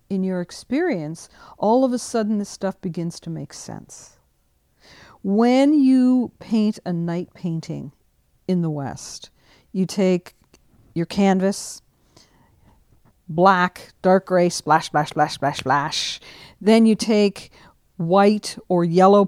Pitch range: 165-220 Hz